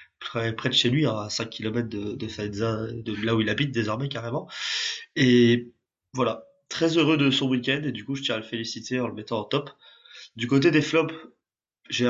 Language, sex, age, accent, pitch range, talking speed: French, male, 20-39, French, 115-140 Hz, 210 wpm